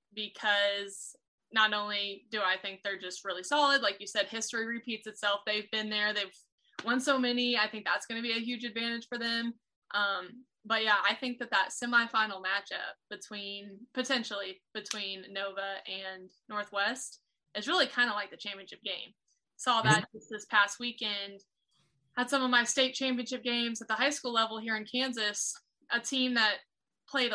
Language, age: English, 20-39